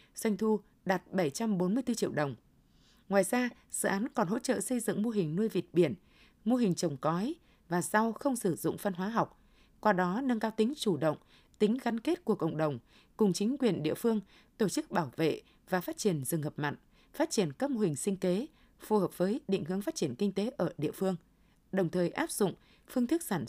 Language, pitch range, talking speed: Vietnamese, 175-230 Hz, 220 wpm